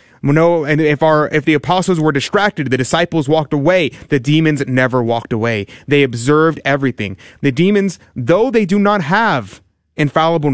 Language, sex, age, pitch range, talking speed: English, male, 30-49, 135-175 Hz, 165 wpm